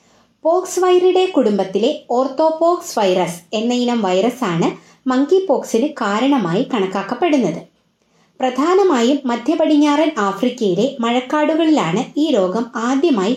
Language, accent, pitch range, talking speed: Malayalam, native, 220-305 Hz, 90 wpm